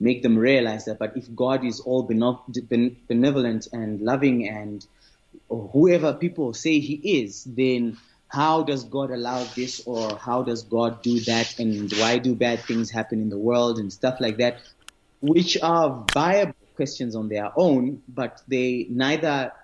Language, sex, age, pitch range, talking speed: English, male, 20-39, 115-140 Hz, 160 wpm